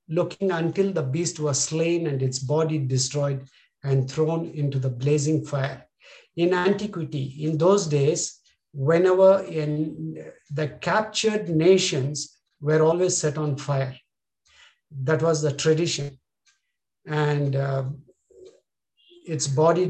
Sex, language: male, English